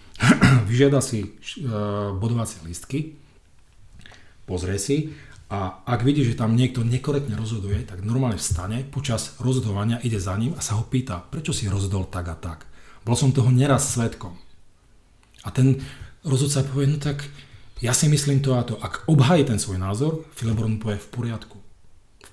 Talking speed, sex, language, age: 160 wpm, male, Czech, 40-59